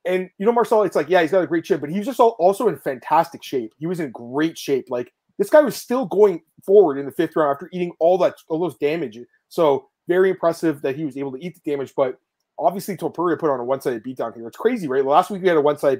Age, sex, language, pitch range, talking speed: 30-49, male, English, 140-185 Hz, 270 wpm